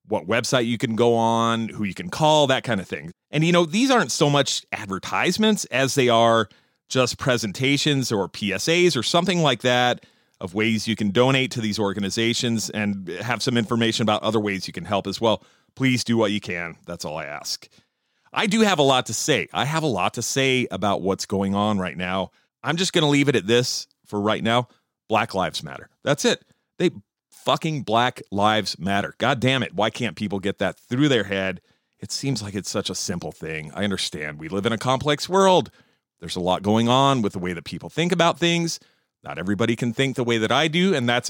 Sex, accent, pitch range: male, American, 100-135 Hz